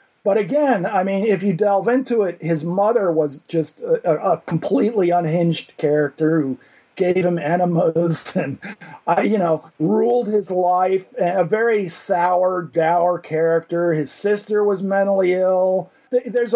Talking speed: 140 wpm